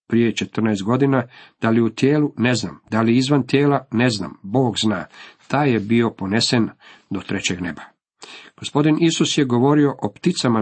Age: 50-69